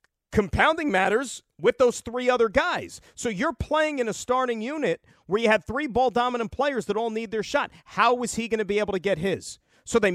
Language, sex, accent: English, male, American